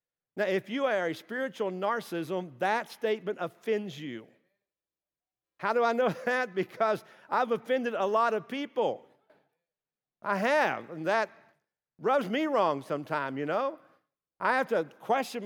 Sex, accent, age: male, American, 50-69